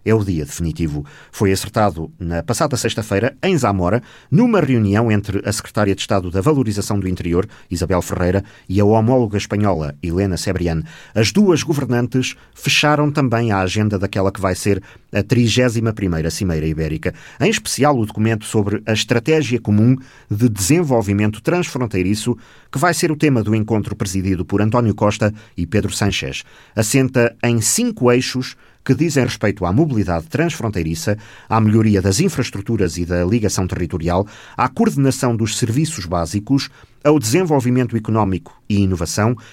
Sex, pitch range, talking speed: male, 95-130 Hz, 150 wpm